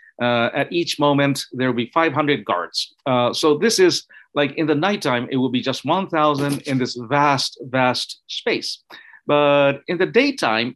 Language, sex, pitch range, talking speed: English, male, 120-155 Hz, 175 wpm